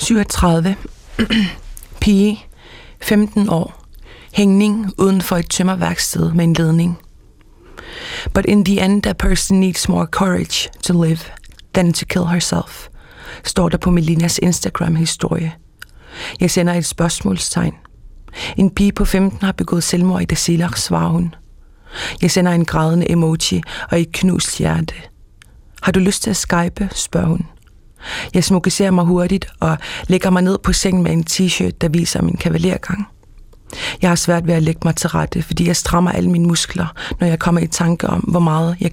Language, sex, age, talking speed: Danish, female, 30-49, 155 wpm